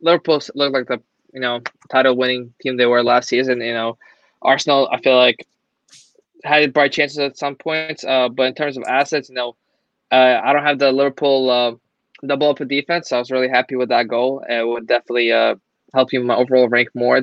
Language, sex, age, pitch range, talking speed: English, male, 20-39, 125-140 Hz, 210 wpm